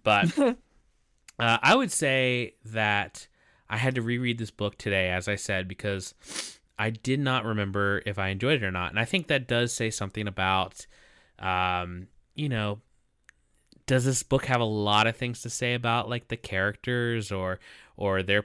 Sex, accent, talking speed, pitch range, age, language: male, American, 180 wpm, 100-120 Hz, 20-39, English